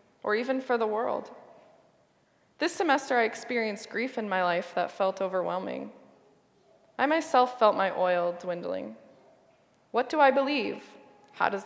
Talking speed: 145 wpm